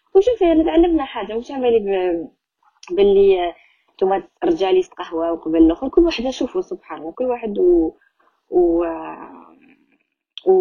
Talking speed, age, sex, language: 105 wpm, 20-39, female, Arabic